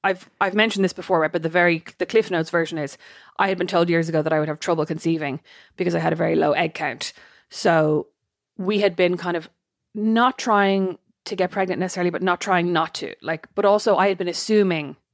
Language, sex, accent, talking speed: English, female, Irish, 230 wpm